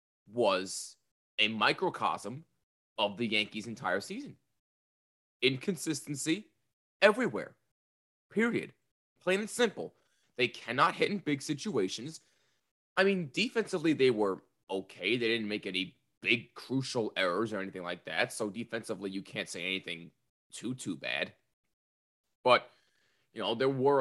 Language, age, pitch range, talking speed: English, 20-39, 95-150 Hz, 125 wpm